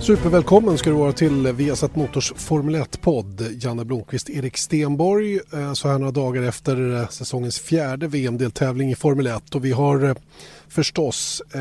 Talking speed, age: 145 wpm, 30-49